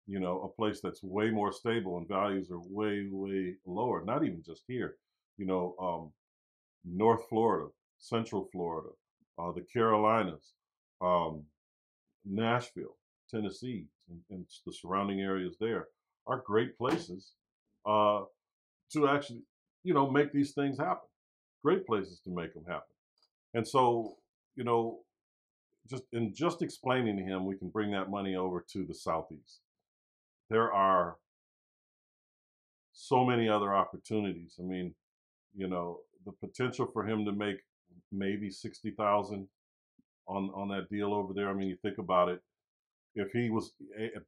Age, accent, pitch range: 50-69, American, 90-110 Hz